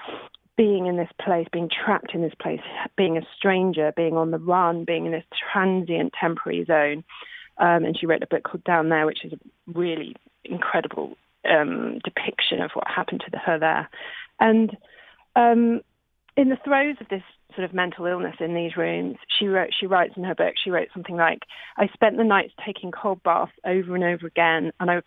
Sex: female